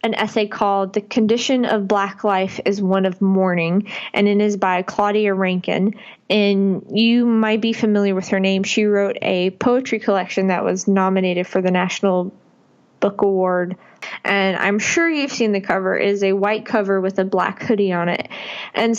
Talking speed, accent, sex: 185 wpm, American, female